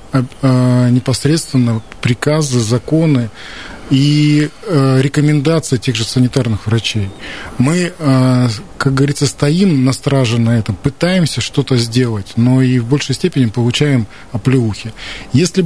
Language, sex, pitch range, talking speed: Russian, male, 125-155 Hz, 105 wpm